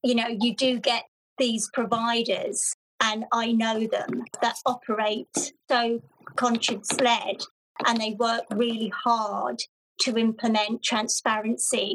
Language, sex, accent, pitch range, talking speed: English, female, British, 230-260 Hz, 115 wpm